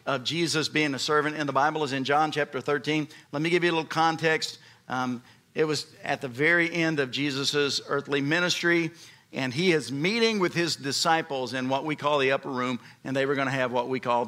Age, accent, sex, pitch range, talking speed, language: 50-69, American, male, 145-220 Hz, 225 wpm, English